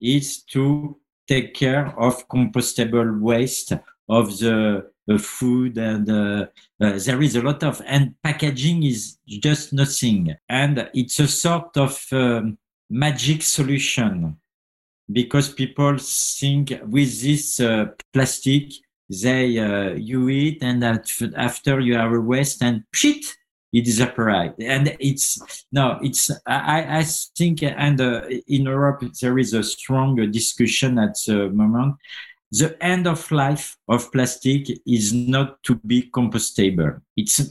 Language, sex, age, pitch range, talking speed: English, male, 50-69, 120-145 Hz, 135 wpm